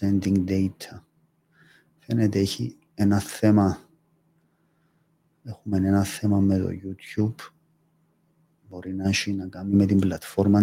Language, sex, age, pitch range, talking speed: English, male, 40-59, 105-155 Hz, 100 wpm